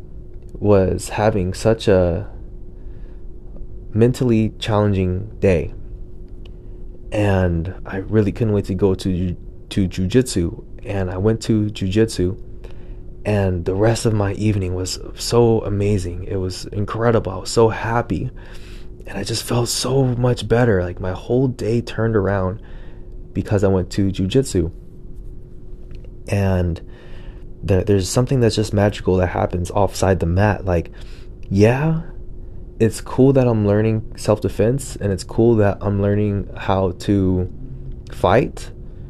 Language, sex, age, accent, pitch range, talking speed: English, male, 20-39, American, 90-120 Hz, 130 wpm